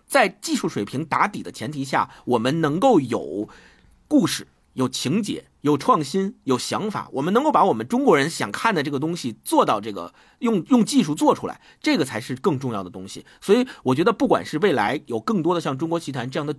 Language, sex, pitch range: Chinese, male, 125-180 Hz